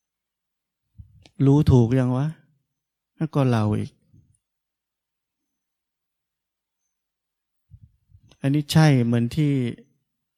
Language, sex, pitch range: Thai, male, 110-135 Hz